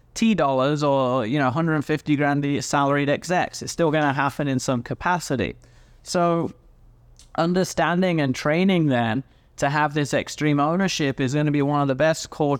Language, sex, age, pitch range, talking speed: English, male, 30-49, 140-170 Hz, 150 wpm